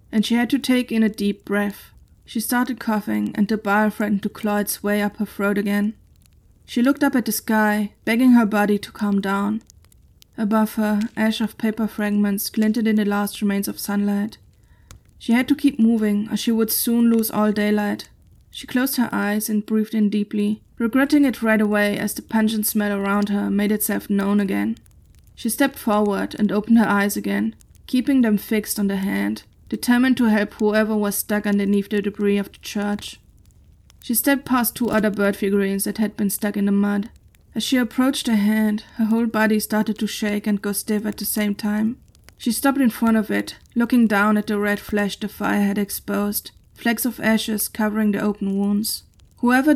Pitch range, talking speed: 205-225 Hz, 200 wpm